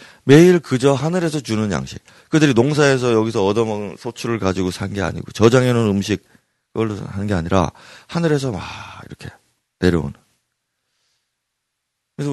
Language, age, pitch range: Korean, 40-59, 90-115 Hz